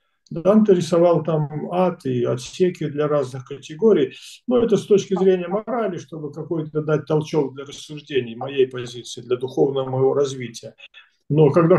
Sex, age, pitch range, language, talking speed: male, 50-69, 130-170 Hz, Russian, 150 wpm